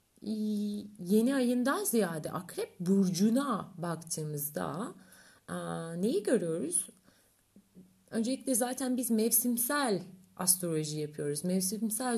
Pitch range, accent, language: 175-225 Hz, native, Turkish